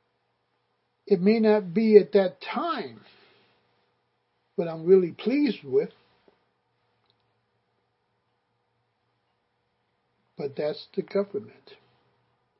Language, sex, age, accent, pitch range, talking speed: English, male, 60-79, American, 175-215 Hz, 75 wpm